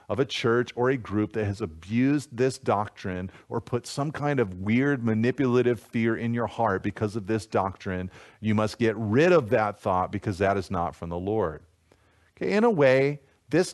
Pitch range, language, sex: 100-140 Hz, English, male